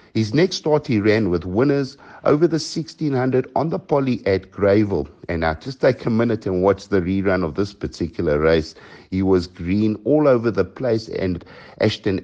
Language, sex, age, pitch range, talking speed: English, male, 60-79, 95-125 Hz, 185 wpm